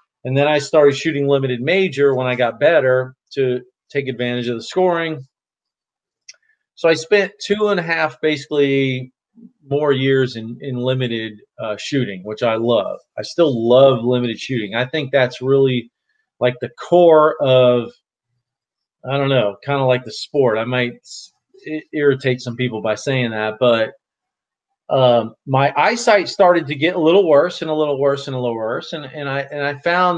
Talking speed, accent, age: 175 wpm, American, 40-59